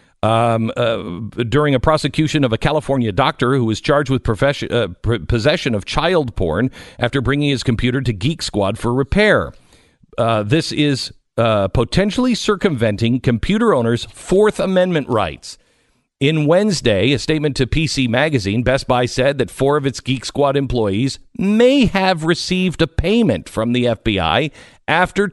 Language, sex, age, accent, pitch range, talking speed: English, male, 50-69, American, 115-180 Hz, 155 wpm